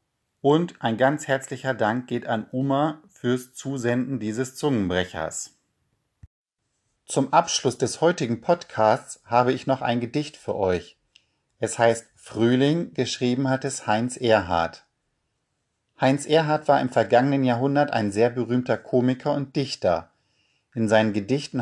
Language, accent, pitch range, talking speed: German, German, 110-135 Hz, 130 wpm